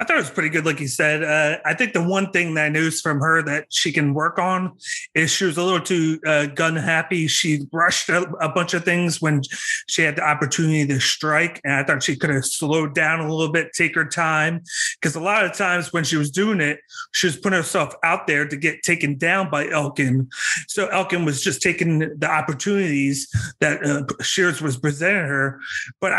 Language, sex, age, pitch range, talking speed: English, male, 30-49, 155-185 Hz, 220 wpm